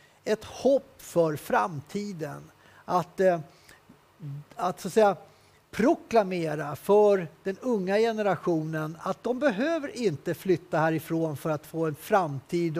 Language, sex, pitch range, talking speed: English, male, 165-215 Hz, 120 wpm